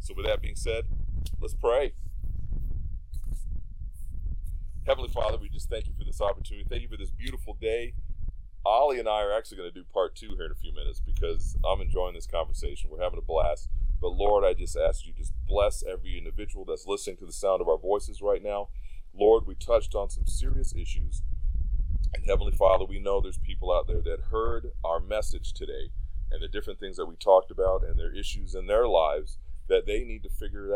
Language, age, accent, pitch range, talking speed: English, 40-59, American, 75-105 Hz, 210 wpm